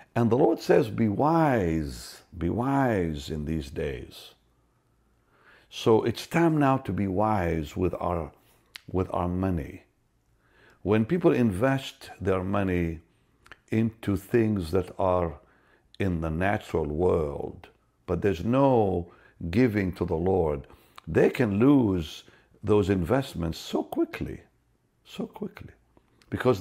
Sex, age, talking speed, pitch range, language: male, 60-79, 115 wpm, 85-115 Hz, English